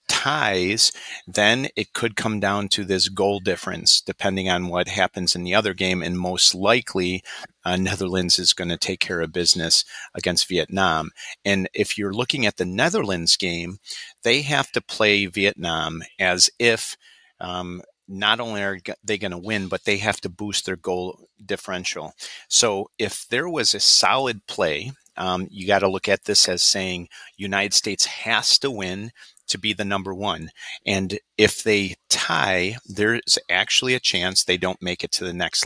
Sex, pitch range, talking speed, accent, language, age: male, 90-105 Hz, 175 wpm, American, English, 40-59